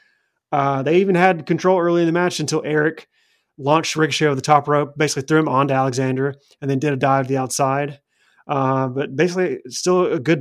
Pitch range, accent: 135-160 Hz, American